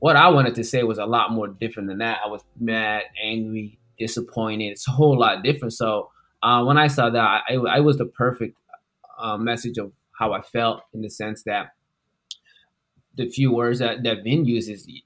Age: 20-39